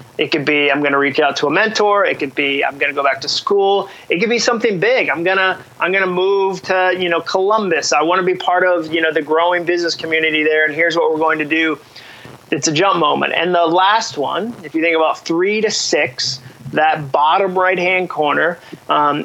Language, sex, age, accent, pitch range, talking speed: English, male, 30-49, American, 155-185 Hz, 225 wpm